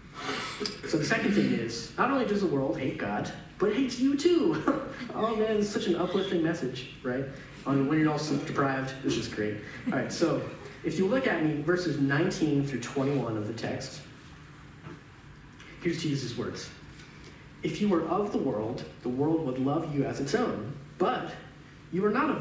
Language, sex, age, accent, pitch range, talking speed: English, male, 30-49, American, 125-160 Hz, 190 wpm